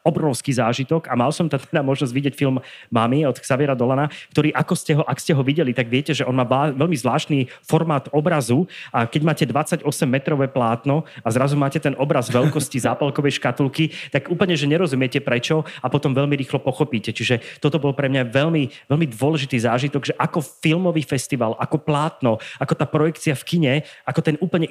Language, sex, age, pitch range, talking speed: Slovak, male, 30-49, 130-155 Hz, 190 wpm